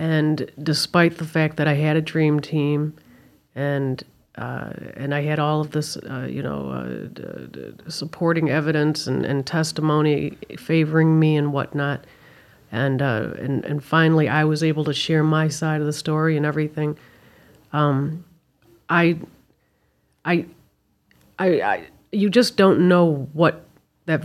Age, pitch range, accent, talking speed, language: 40-59, 140-160 Hz, American, 150 wpm, English